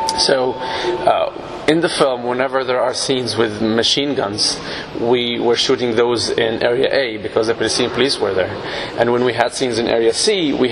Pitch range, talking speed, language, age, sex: 115-140 Hz, 185 wpm, English, 20-39, male